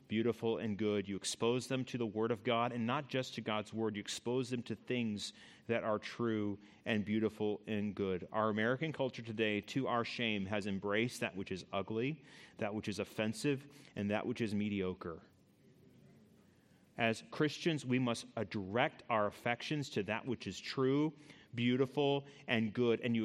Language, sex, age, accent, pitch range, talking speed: English, male, 30-49, American, 110-130 Hz, 175 wpm